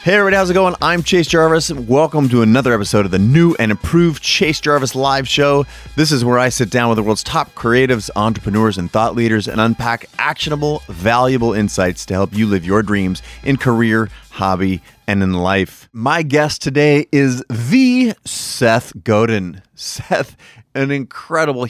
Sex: male